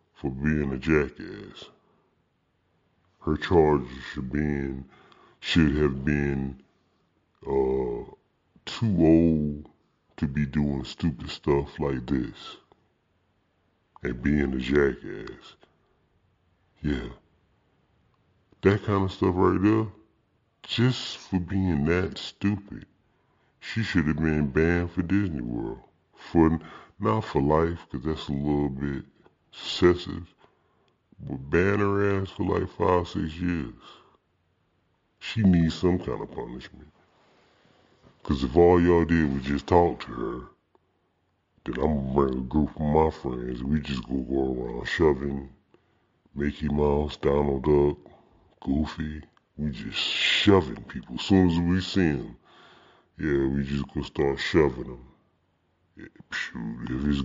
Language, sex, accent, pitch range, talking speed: English, female, American, 70-90 Hz, 130 wpm